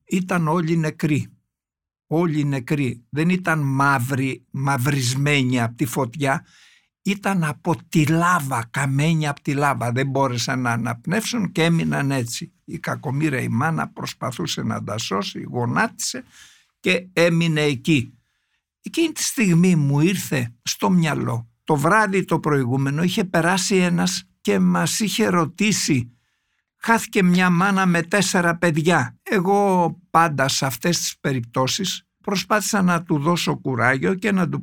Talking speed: 135 wpm